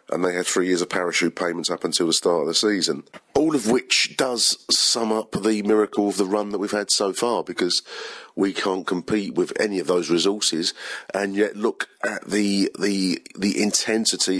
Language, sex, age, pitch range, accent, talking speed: English, male, 40-59, 95-105 Hz, British, 200 wpm